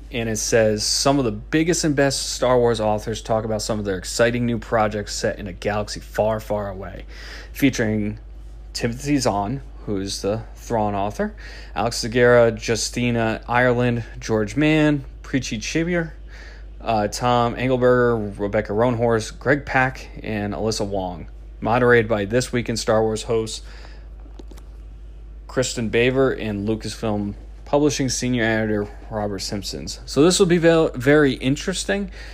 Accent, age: American, 30-49